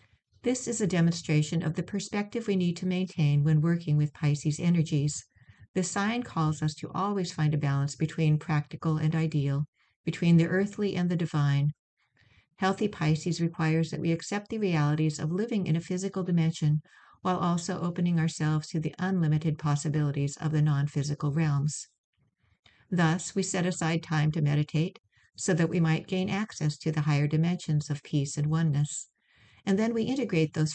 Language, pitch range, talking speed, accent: English, 155-185 Hz, 170 wpm, American